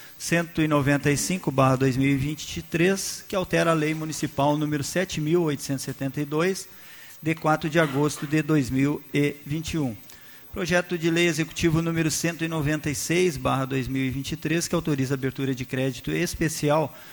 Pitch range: 135-160 Hz